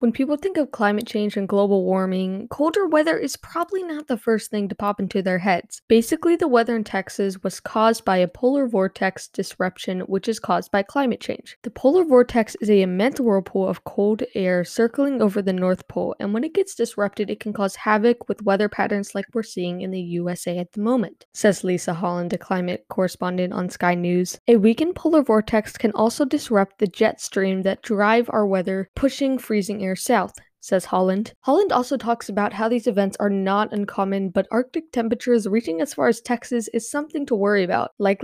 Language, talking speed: English, 200 wpm